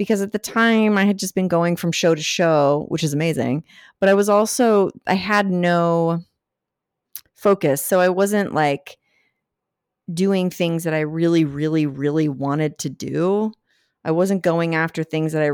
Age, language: 30-49, English